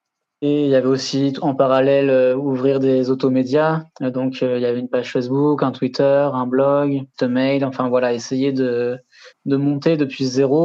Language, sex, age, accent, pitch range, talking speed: French, male, 20-39, French, 130-145 Hz, 190 wpm